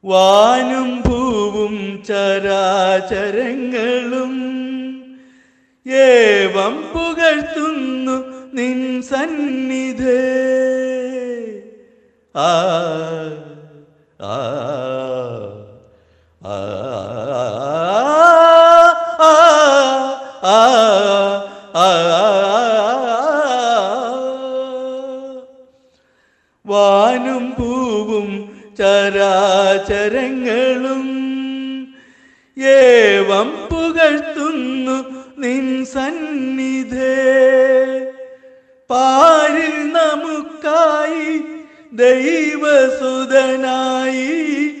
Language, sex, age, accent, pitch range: Malayalam, male, 50-69, native, 245-310 Hz